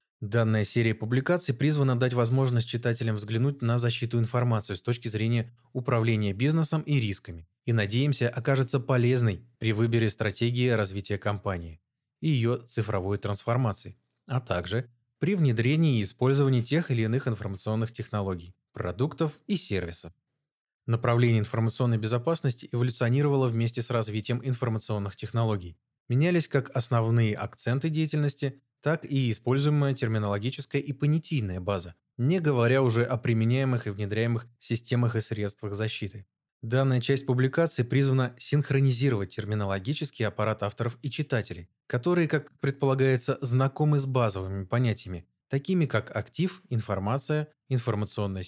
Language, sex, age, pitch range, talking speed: Russian, male, 20-39, 110-135 Hz, 125 wpm